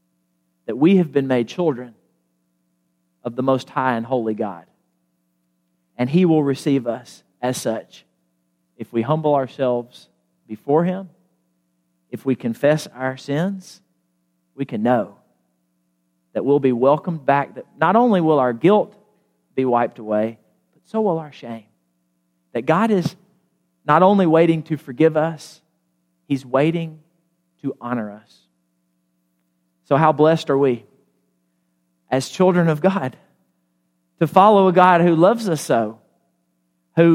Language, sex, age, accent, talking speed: English, male, 40-59, American, 135 wpm